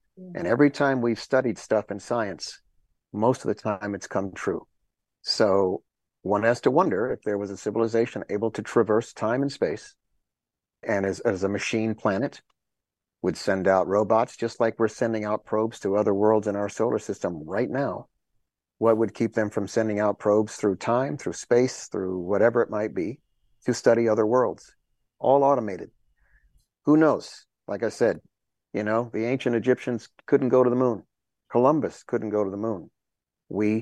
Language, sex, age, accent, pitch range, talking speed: English, male, 50-69, American, 100-120 Hz, 180 wpm